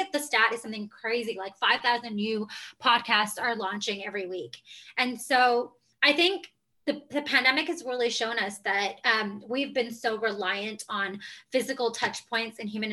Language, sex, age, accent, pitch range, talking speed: English, female, 20-39, American, 205-255 Hz, 165 wpm